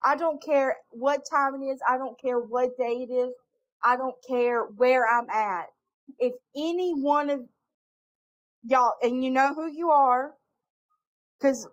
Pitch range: 245-295 Hz